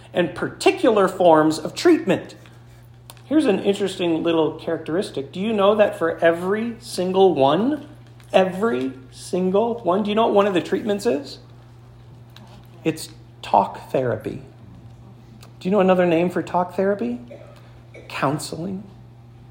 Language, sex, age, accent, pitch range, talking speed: English, male, 40-59, American, 120-190 Hz, 130 wpm